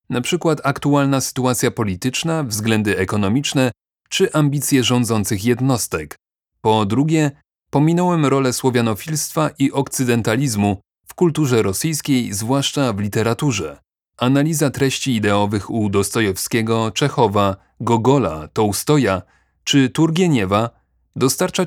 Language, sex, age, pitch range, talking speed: Polish, male, 30-49, 110-140 Hz, 95 wpm